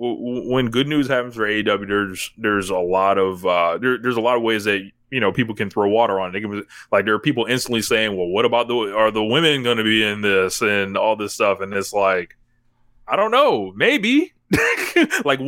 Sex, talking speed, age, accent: male, 215 wpm, 20-39, American